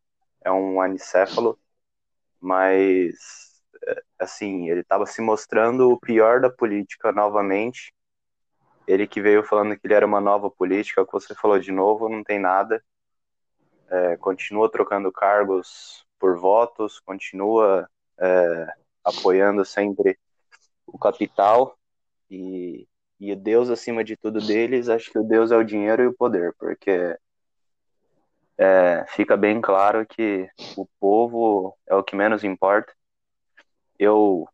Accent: Brazilian